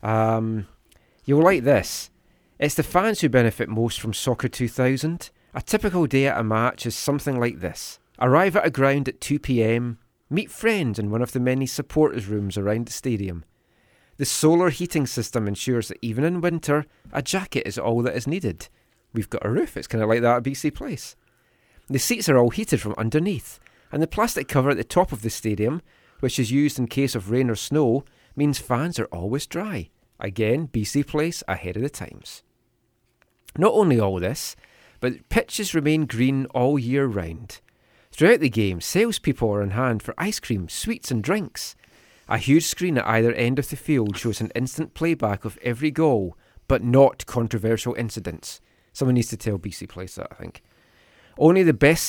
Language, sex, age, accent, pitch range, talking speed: English, male, 30-49, British, 115-150 Hz, 190 wpm